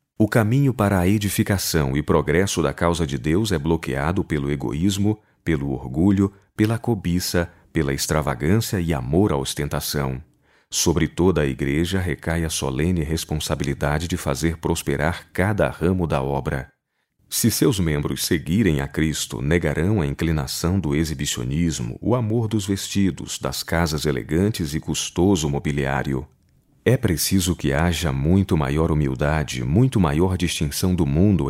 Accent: Brazilian